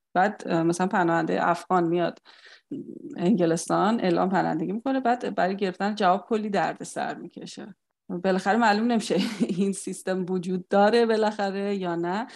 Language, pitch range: Persian, 175-220 Hz